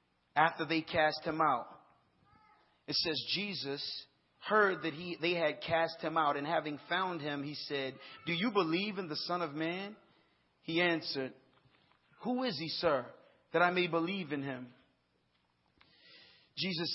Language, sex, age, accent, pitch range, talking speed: English, male, 40-59, American, 150-190 Hz, 150 wpm